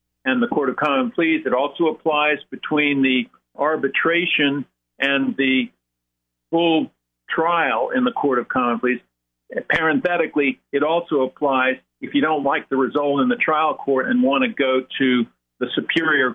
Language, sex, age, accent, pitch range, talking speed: English, male, 50-69, American, 125-170 Hz, 160 wpm